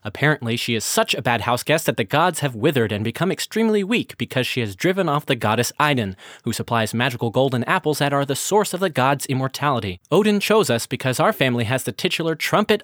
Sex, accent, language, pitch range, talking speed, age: male, American, English, 120-180 Hz, 220 wpm, 20-39